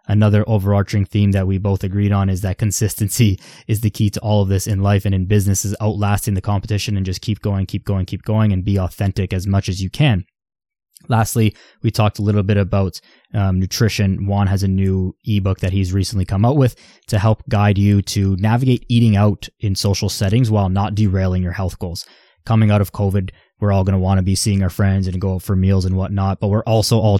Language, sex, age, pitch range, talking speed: English, male, 20-39, 100-110 Hz, 230 wpm